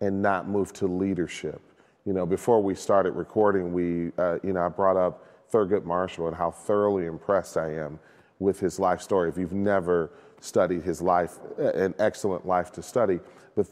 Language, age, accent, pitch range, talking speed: English, 40-59, American, 85-100 Hz, 185 wpm